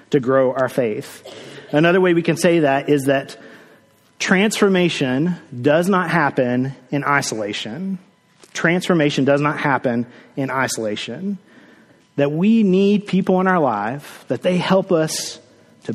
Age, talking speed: 30-49, 135 wpm